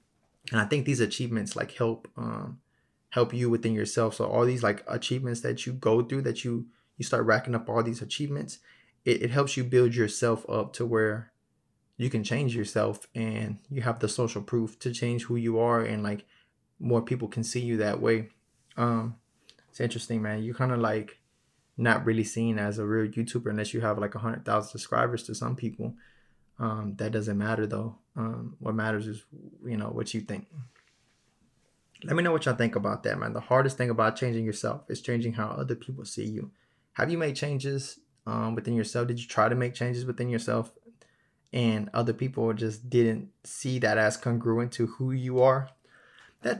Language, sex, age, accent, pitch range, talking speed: English, male, 20-39, American, 110-125 Hz, 200 wpm